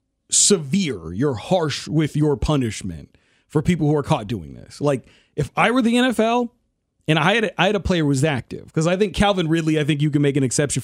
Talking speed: 230 wpm